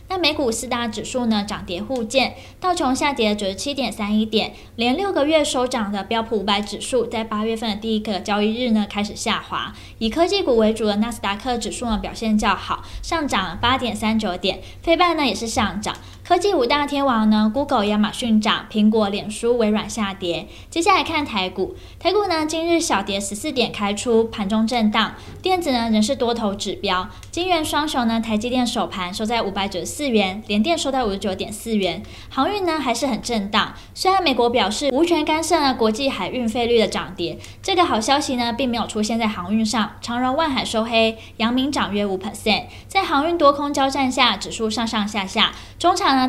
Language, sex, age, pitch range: Chinese, female, 10-29, 210-270 Hz